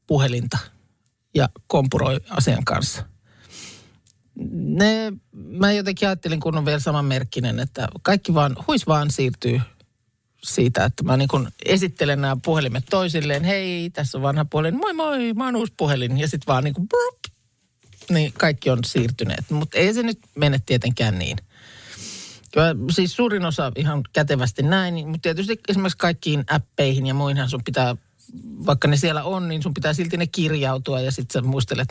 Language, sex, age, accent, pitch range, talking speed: Finnish, male, 50-69, native, 125-170 Hz, 155 wpm